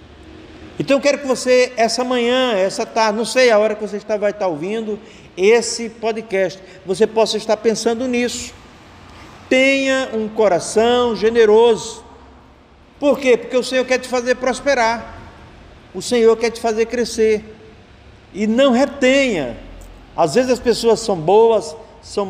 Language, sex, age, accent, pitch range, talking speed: Portuguese, male, 50-69, Brazilian, 195-245 Hz, 150 wpm